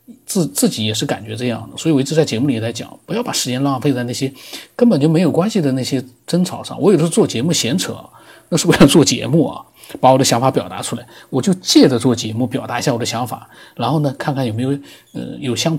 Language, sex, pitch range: Chinese, male, 115-145 Hz